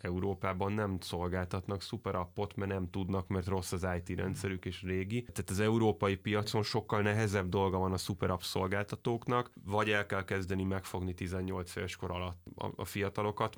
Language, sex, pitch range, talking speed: Hungarian, male, 95-105 Hz, 155 wpm